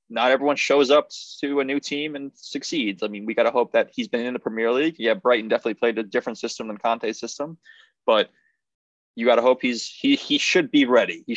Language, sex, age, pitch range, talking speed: English, male, 20-39, 110-140 Hz, 240 wpm